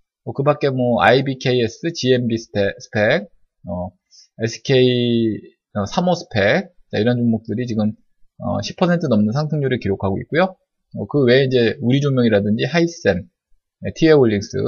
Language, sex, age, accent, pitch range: Korean, male, 20-39, native, 110-150 Hz